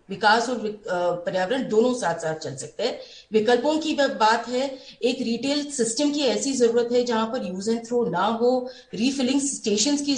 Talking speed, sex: 155 wpm, female